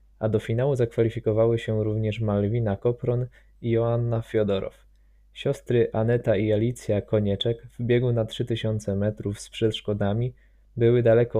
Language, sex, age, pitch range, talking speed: Polish, male, 20-39, 110-120 Hz, 130 wpm